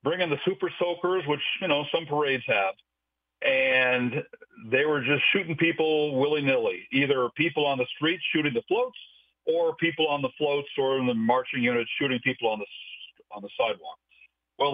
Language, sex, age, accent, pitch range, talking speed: English, male, 50-69, American, 120-160 Hz, 175 wpm